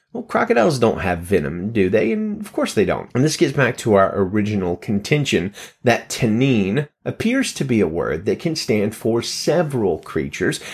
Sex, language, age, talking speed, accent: male, English, 30-49, 185 wpm, American